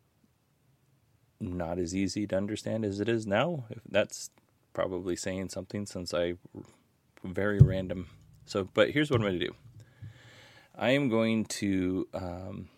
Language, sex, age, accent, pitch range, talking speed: English, male, 30-49, American, 90-115 Hz, 140 wpm